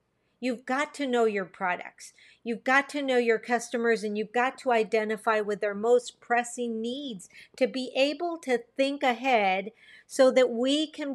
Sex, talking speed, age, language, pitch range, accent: female, 170 wpm, 50-69, English, 220-265 Hz, American